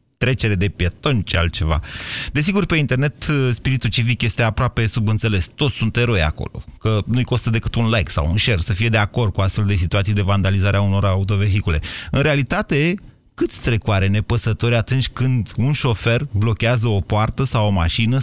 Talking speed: 180 wpm